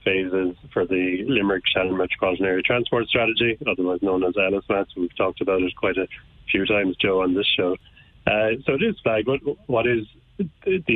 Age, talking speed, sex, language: 40-59, 185 wpm, male, English